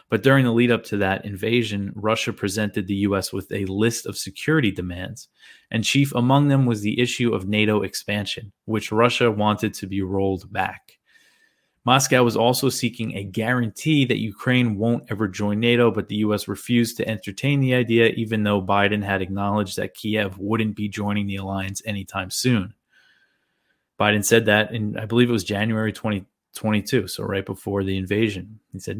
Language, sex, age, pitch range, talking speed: English, male, 20-39, 100-120 Hz, 180 wpm